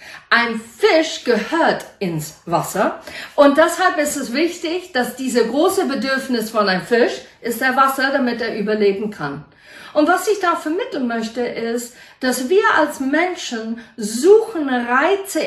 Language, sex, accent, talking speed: German, female, German, 145 wpm